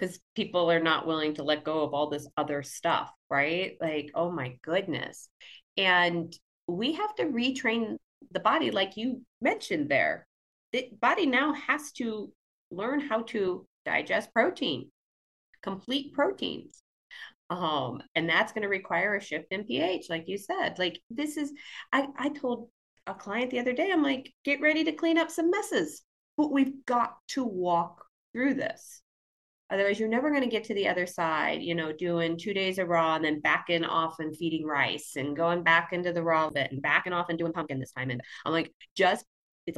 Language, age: English, 30-49